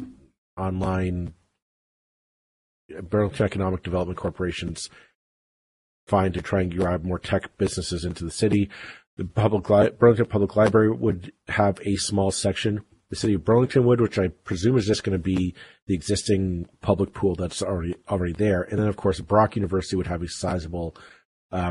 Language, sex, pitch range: English, male, 90-110 Hz